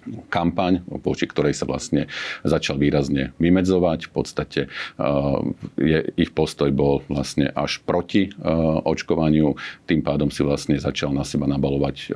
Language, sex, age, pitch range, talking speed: Slovak, male, 50-69, 70-80 Hz, 130 wpm